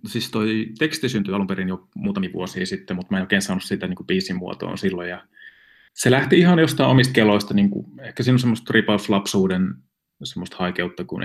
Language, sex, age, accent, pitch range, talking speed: Finnish, male, 20-39, native, 95-125 Hz, 185 wpm